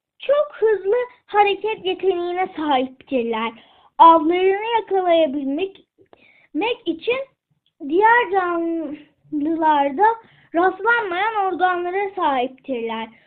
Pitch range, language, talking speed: 305-430 Hz, Turkish, 60 wpm